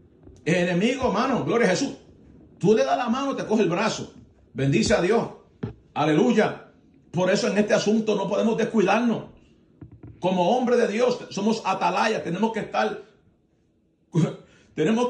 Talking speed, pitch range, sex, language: 145 wpm, 160-225 Hz, male, Spanish